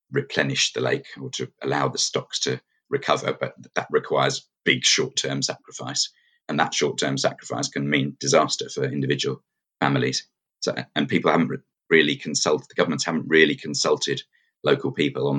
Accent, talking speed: British, 160 wpm